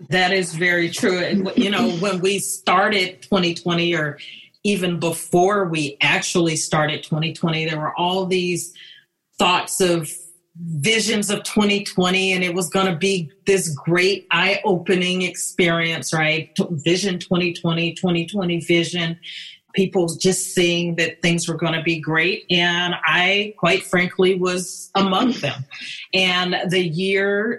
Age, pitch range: 30-49, 170-200 Hz